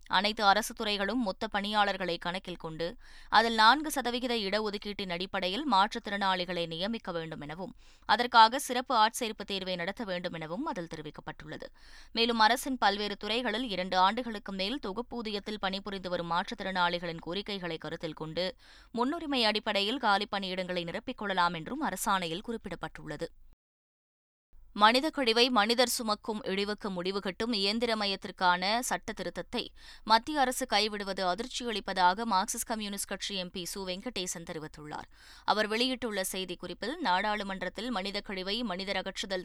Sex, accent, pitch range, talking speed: female, native, 180-230 Hz, 110 wpm